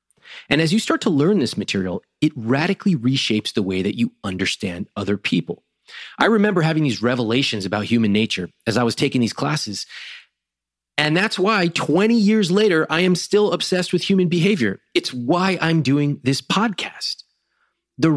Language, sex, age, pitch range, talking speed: English, male, 30-49, 105-160 Hz, 170 wpm